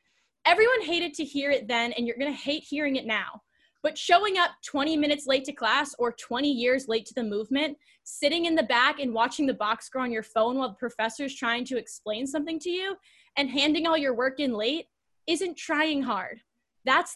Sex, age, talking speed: female, 10-29, 210 wpm